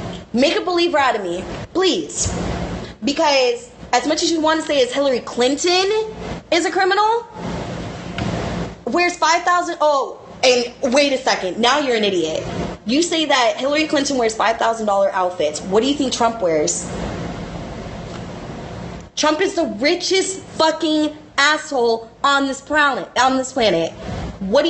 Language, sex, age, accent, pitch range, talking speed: English, female, 20-39, American, 225-310 Hz, 140 wpm